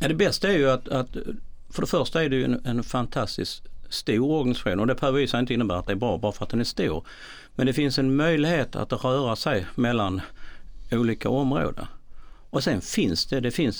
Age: 50-69